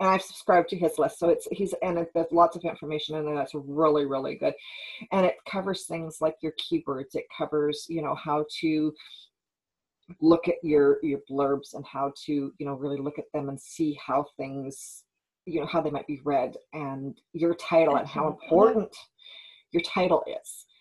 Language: English